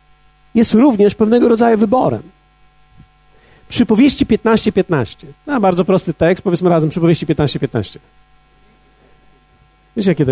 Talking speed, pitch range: 115 wpm, 150-220 Hz